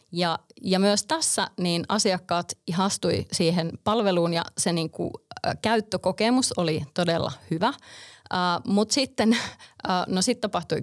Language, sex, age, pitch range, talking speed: Finnish, female, 20-39, 170-205 Hz, 140 wpm